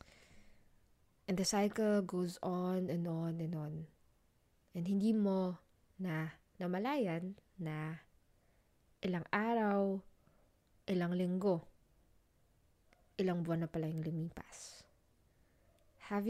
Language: Filipino